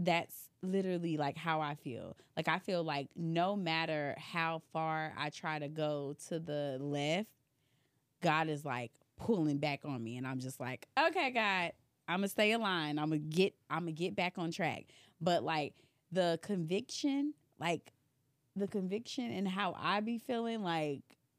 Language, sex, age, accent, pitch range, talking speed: English, female, 20-39, American, 140-180 Hz, 160 wpm